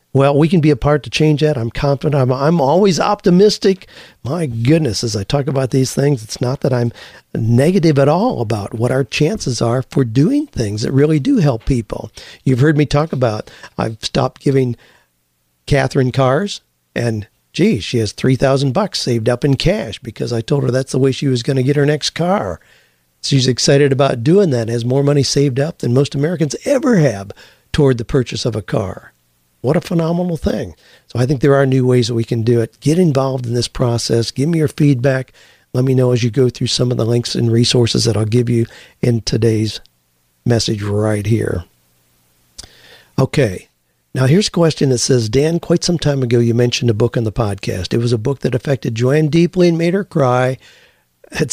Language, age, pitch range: English, 50-69, 115-145 Hz